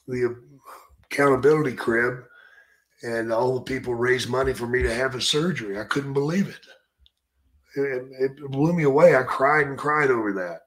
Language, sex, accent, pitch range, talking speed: English, male, American, 120-150 Hz, 170 wpm